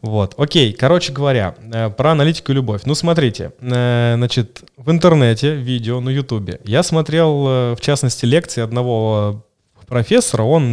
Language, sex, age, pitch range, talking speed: Russian, male, 20-39, 115-145 Hz, 135 wpm